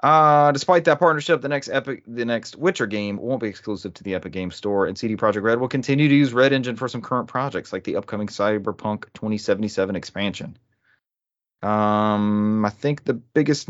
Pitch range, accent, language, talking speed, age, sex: 100-125 Hz, American, English, 195 wpm, 30-49, male